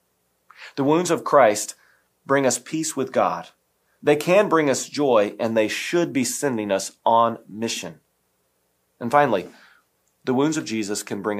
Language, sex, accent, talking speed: English, male, American, 160 wpm